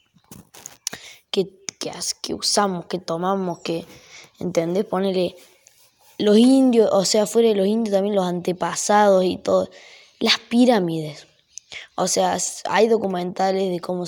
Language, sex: Spanish, female